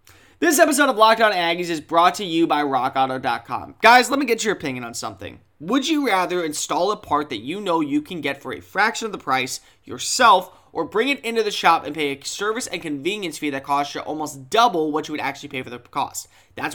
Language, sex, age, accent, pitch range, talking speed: English, male, 20-39, American, 150-220 Hz, 235 wpm